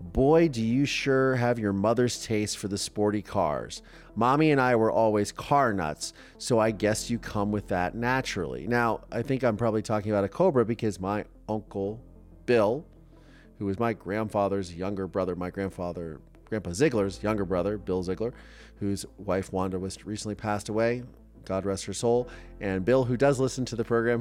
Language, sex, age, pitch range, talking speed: English, male, 30-49, 95-120 Hz, 180 wpm